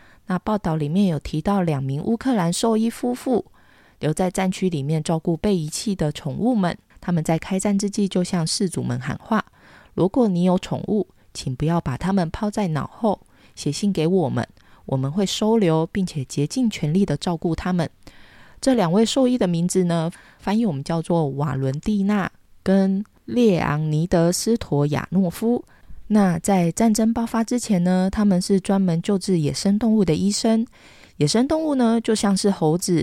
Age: 20-39